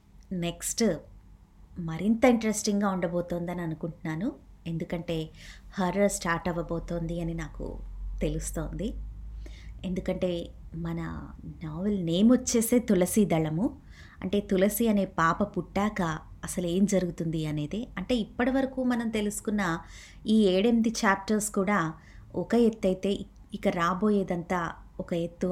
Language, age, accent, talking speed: Telugu, 20-39, native, 100 wpm